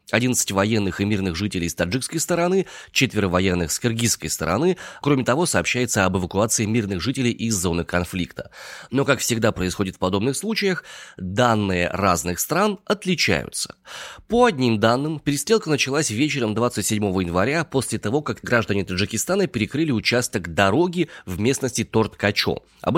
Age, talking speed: 20-39, 140 wpm